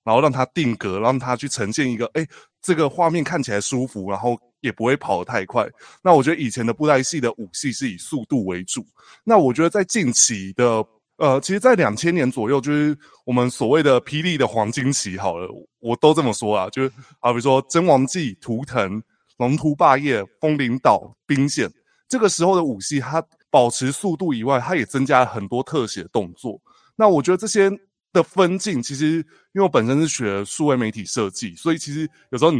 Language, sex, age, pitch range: Chinese, male, 20-39, 115-155 Hz